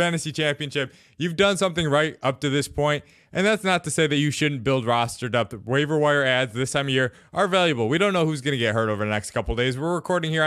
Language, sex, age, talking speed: English, male, 20-39, 275 wpm